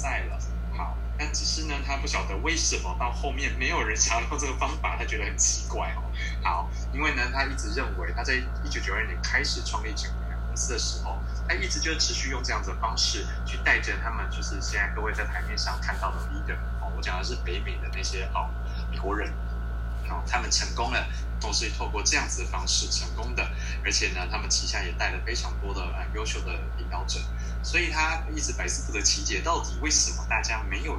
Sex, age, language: male, 20-39, Chinese